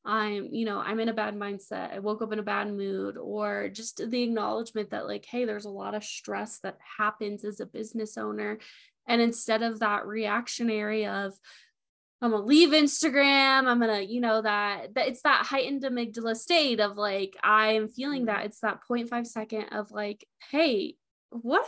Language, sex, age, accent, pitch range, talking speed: English, female, 10-29, American, 210-245 Hz, 190 wpm